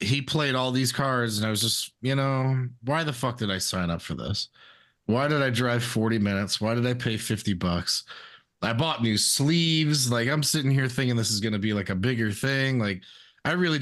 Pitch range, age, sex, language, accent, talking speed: 105-140 Hz, 20-39, male, English, American, 225 wpm